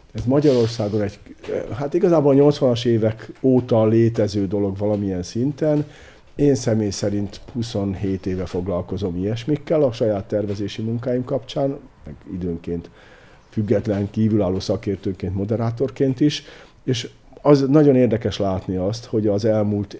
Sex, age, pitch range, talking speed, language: male, 50-69, 95-125 Hz, 120 wpm, Hungarian